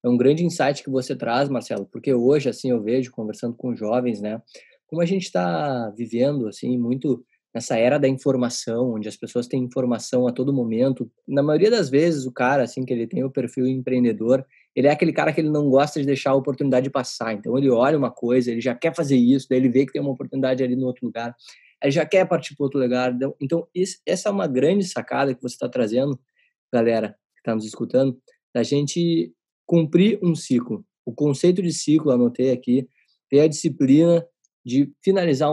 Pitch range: 125-160 Hz